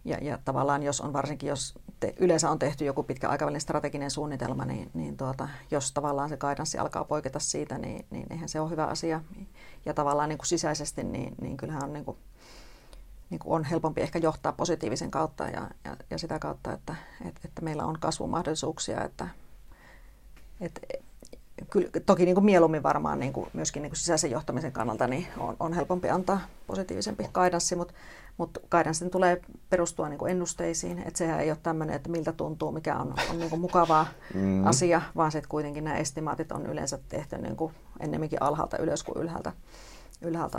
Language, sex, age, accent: Finnish, female, 40-59, native